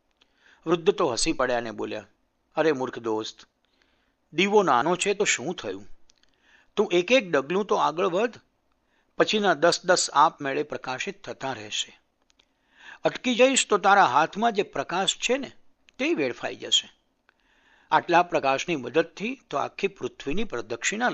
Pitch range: 140-215 Hz